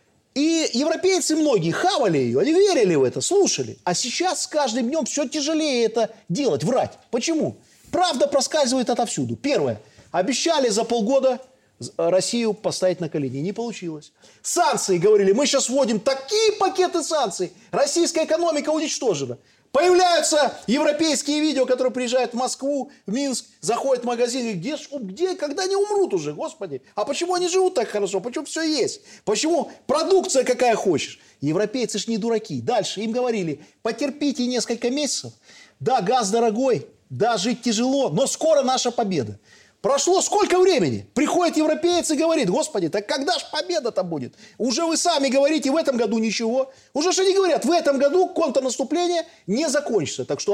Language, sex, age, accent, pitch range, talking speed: Russian, male, 30-49, native, 225-315 Hz, 155 wpm